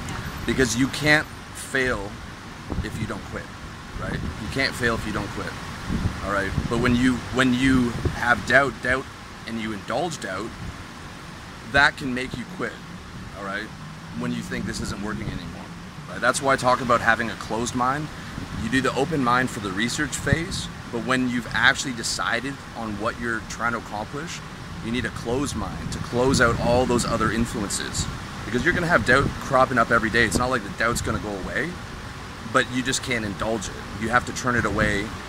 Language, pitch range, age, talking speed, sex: English, 100-125 Hz, 30-49, 195 wpm, male